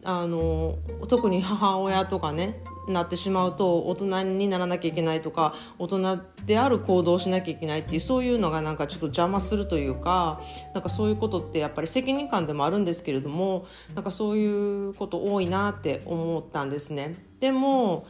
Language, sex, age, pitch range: Japanese, female, 40-59, 150-205 Hz